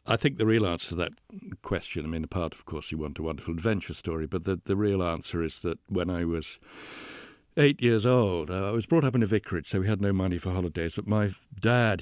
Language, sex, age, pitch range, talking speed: English, male, 60-79, 85-120 Hz, 250 wpm